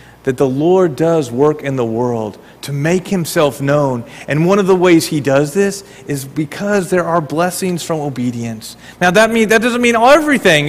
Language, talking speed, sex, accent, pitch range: English, 190 wpm, male, American, 140-195 Hz